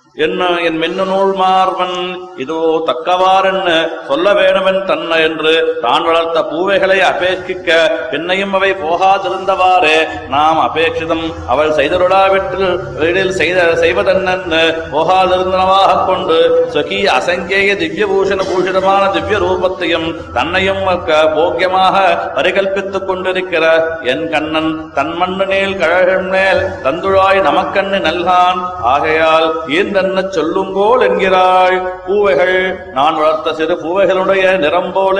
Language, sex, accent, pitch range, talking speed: Tamil, male, native, 170-195 Hz, 85 wpm